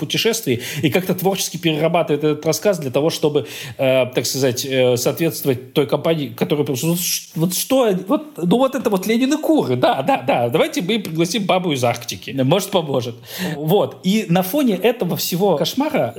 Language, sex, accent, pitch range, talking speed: Russian, male, native, 135-195 Hz, 165 wpm